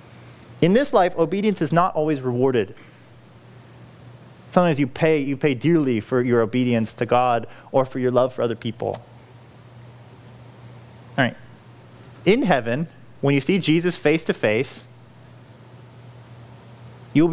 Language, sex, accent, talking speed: English, male, American, 130 wpm